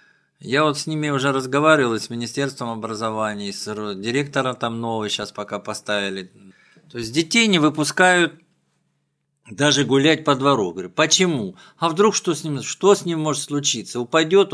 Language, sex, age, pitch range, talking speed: Russian, male, 50-69, 115-155 Hz, 150 wpm